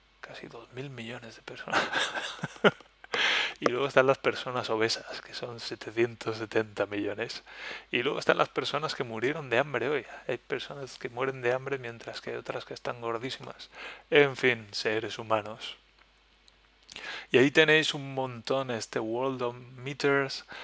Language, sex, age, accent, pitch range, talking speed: Spanish, male, 30-49, Spanish, 110-130 Hz, 150 wpm